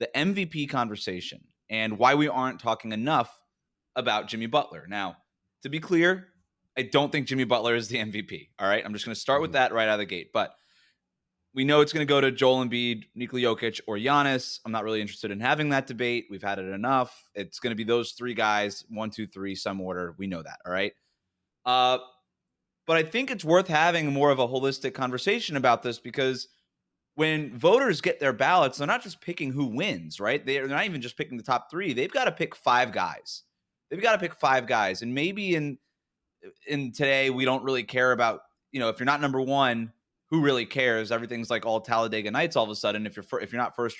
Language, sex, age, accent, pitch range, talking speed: English, male, 20-39, American, 110-140 Hz, 225 wpm